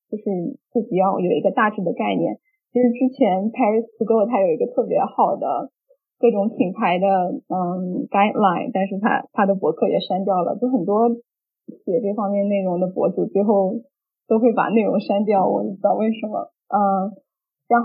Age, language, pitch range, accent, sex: 10-29, Chinese, 195-250 Hz, native, female